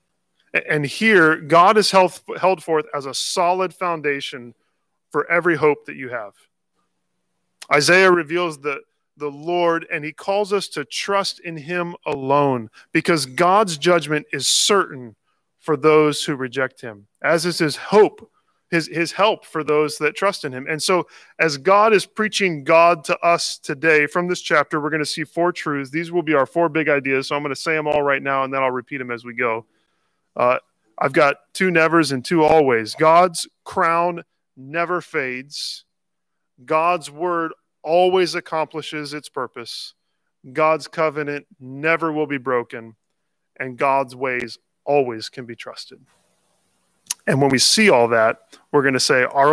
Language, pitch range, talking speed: English, 135-175 Hz, 165 wpm